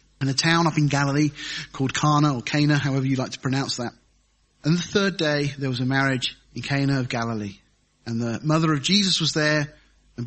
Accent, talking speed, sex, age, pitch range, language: British, 210 wpm, male, 30-49, 145-210 Hz, English